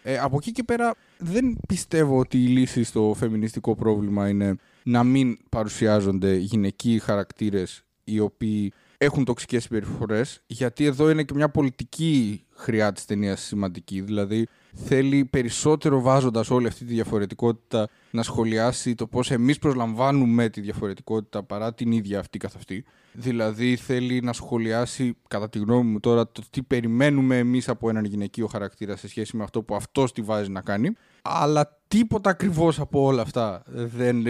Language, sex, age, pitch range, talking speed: Greek, male, 20-39, 110-135 Hz, 155 wpm